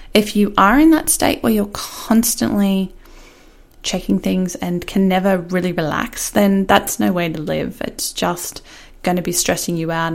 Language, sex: English, female